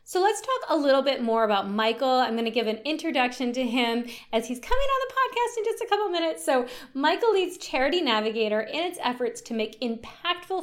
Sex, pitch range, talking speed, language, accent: female, 210-285 Hz, 225 wpm, English, American